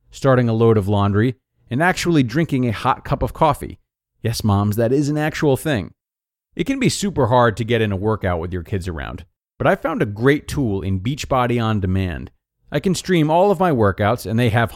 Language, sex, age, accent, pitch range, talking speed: English, male, 30-49, American, 100-160 Hz, 220 wpm